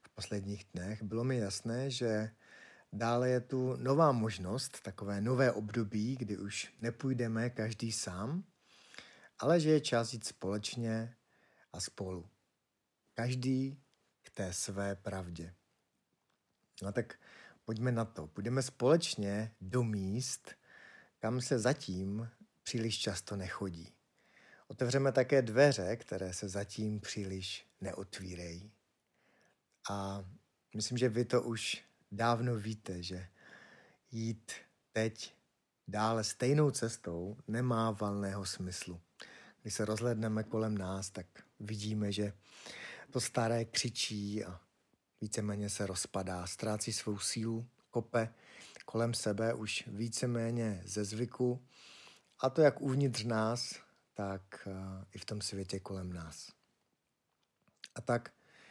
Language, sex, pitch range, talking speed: Czech, male, 100-120 Hz, 115 wpm